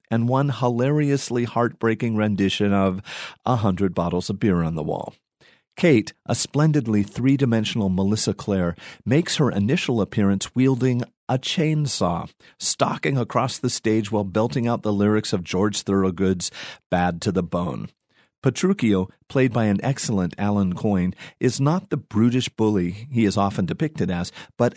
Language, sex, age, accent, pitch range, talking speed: English, male, 40-59, American, 100-135 Hz, 150 wpm